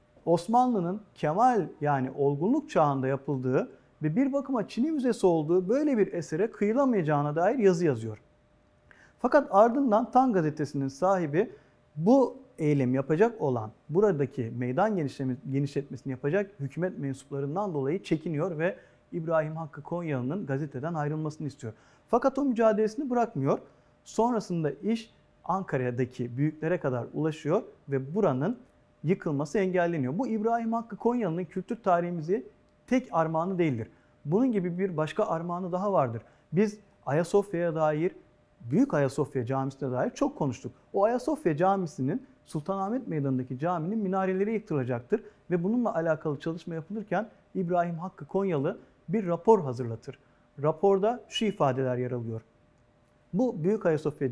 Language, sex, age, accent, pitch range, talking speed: Turkish, male, 40-59, native, 140-210 Hz, 120 wpm